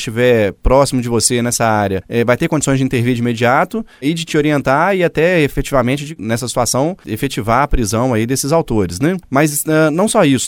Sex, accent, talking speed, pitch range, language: male, Brazilian, 205 wpm, 125-175 Hz, Portuguese